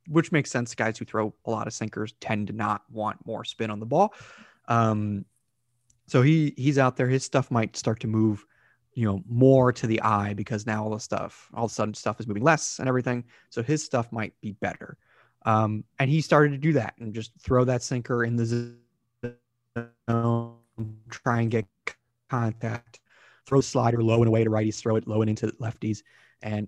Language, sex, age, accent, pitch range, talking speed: English, male, 20-39, American, 110-125 Hz, 205 wpm